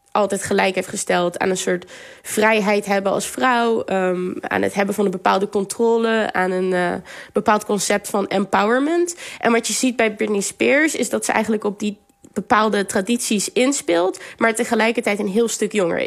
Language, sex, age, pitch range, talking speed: Dutch, female, 20-39, 200-245 Hz, 175 wpm